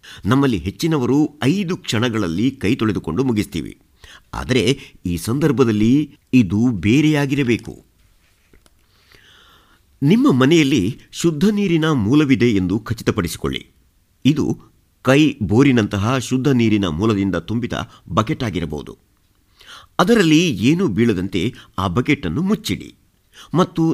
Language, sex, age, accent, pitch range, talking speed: Kannada, male, 50-69, native, 95-140 Hz, 90 wpm